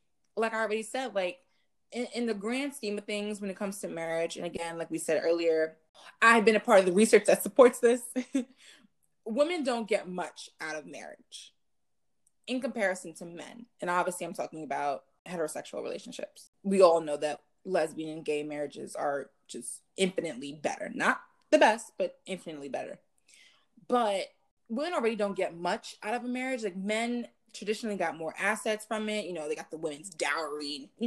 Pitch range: 170-235 Hz